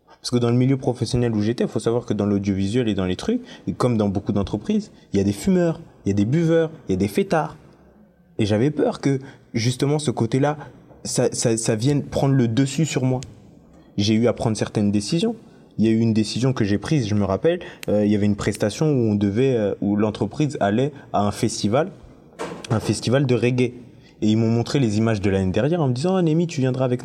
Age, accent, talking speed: 20-39, French, 245 wpm